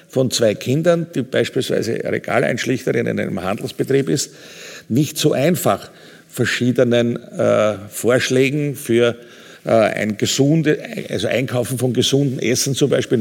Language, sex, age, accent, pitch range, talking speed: German, male, 50-69, Austrian, 120-150 Hz, 125 wpm